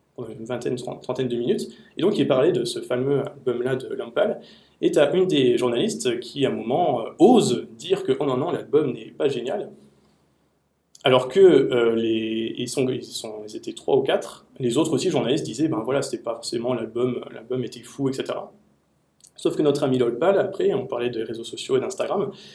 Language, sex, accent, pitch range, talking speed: French, male, French, 120-150 Hz, 215 wpm